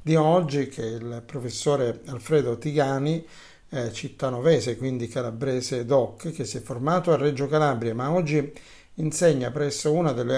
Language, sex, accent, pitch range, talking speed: Italian, male, native, 130-160 Hz, 145 wpm